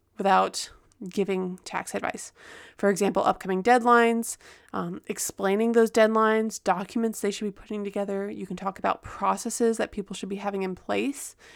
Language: English